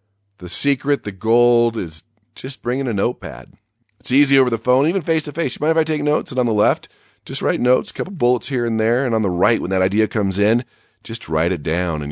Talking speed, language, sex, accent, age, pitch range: 245 wpm, English, male, American, 40-59, 110-150 Hz